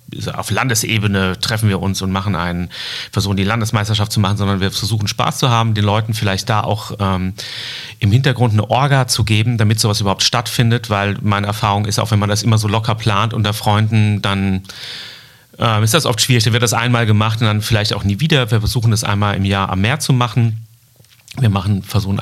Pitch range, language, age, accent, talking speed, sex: 100-120 Hz, German, 40-59, German, 215 wpm, male